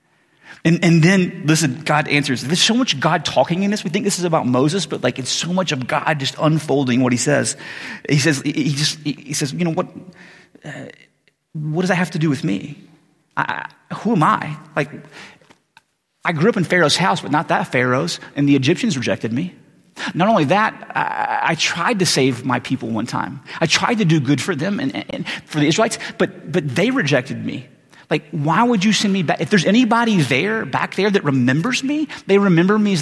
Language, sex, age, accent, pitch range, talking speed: English, male, 30-49, American, 135-185 Hz, 215 wpm